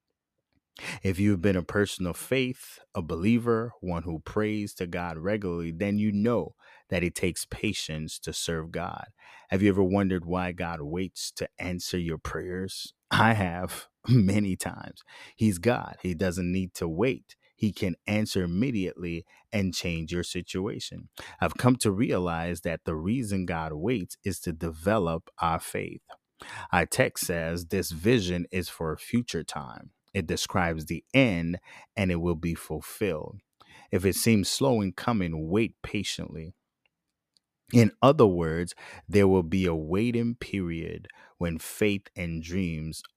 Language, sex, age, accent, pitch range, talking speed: English, male, 30-49, American, 85-105 Hz, 150 wpm